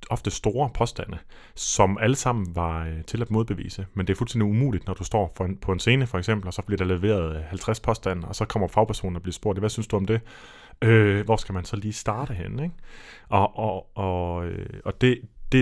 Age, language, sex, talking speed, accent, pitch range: 30-49, Danish, male, 240 wpm, native, 95-110 Hz